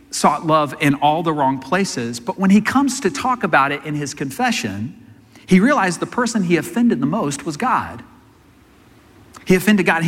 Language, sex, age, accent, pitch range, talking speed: English, male, 40-59, American, 120-195 Hz, 190 wpm